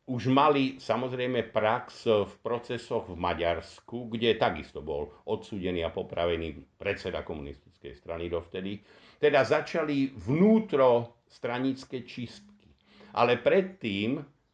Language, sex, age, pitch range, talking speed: Slovak, male, 60-79, 95-120 Hz, 105 wpm